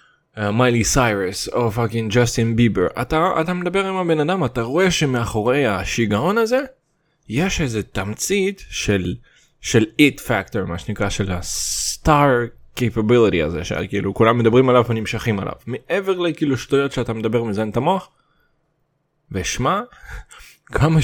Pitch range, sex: 120-195 Hz, male